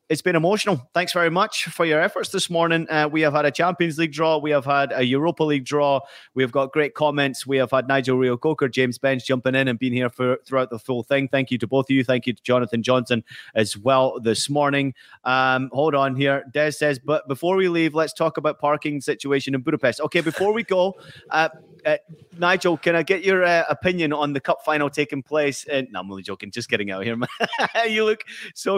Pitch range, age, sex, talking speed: 130-155 Hz, 30-49, male, 235 wpm